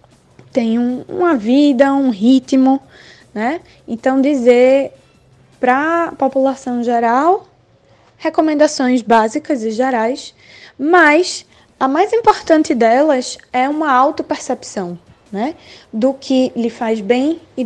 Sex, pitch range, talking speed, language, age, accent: female, 230-290 Hz, 105 wpm, Portuguese, 10-29, Brazilian